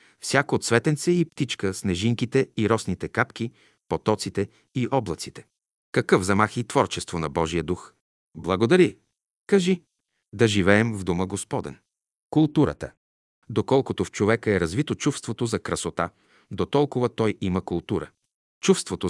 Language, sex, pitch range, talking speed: Bulgarian, male, 95-120 Hz, 125 wpm